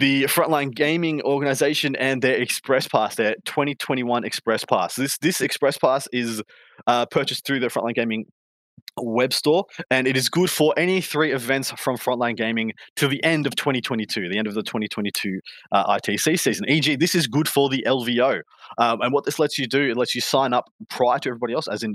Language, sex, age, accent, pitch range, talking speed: English, male, 20-39, Australian, 115-140 Hz, 200 wpm